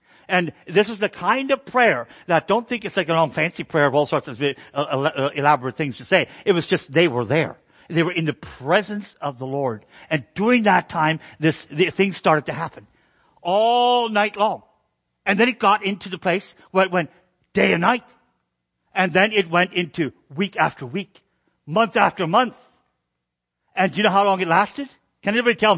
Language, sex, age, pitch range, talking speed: English, male, 60-79, 150-195 Hz, 205 wpm